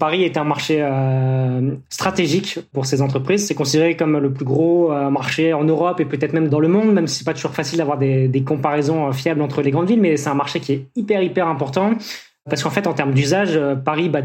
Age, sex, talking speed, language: 20-39, male, 245 wpm, French